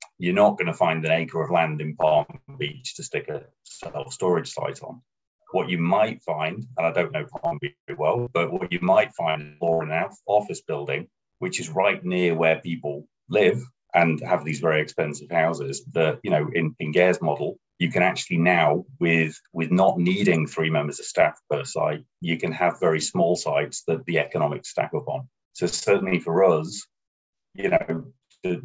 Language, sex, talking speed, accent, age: English, male, 195 wpm, British, 30-49